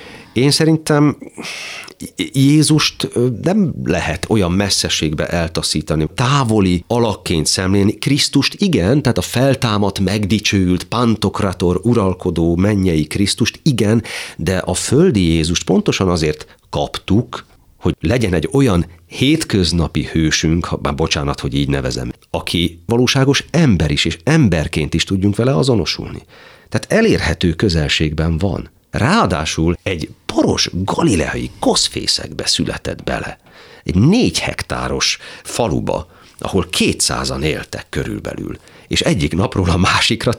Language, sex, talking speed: Hungarian, male, 110 wpm